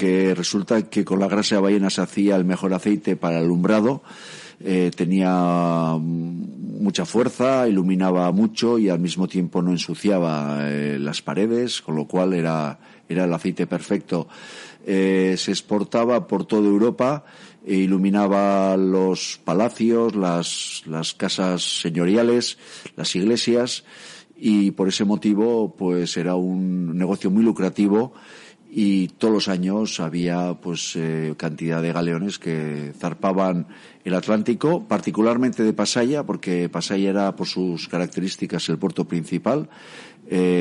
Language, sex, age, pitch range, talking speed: Spanish, male, 50-69, 90-105 Hz, 135 wpm